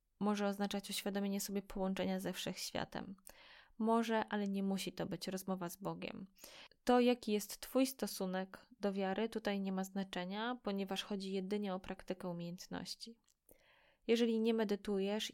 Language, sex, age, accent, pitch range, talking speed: Polish, female, 10-29, native, 190-210 Hz, 140 wpm